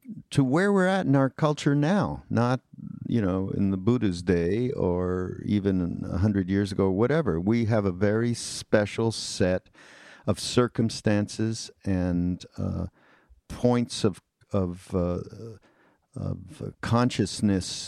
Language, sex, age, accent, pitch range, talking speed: English, male, 50-69, American, 95-125 Hz, 130 wpm